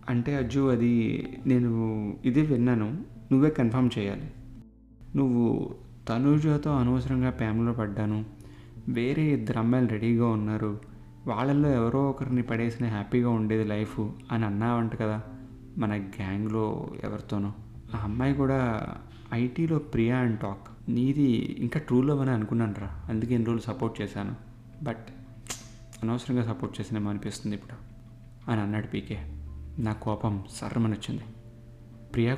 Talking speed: 115 wpm